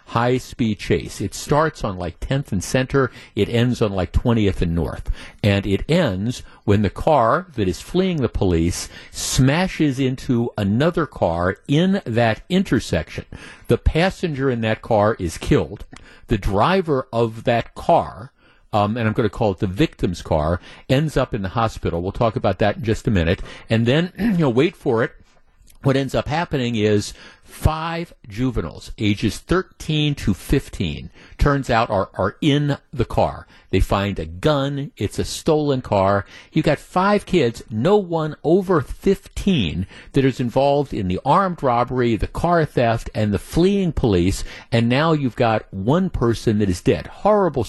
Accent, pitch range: American, 100-145 Hz